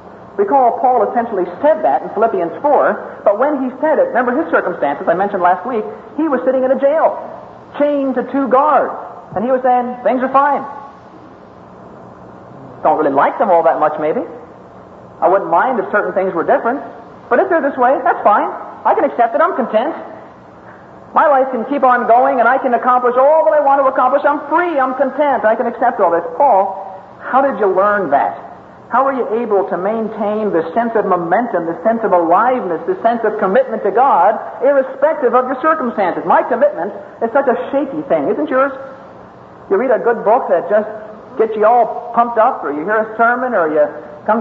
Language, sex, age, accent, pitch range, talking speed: English, male, 50-69, American, 185-265 Hz, 205 wpm